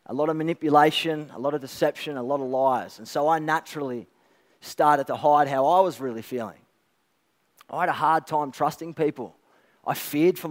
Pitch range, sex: 135-165 Hz, male